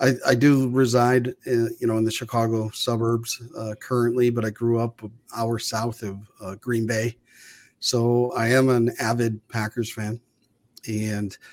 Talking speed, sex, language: 165 wpm, male, English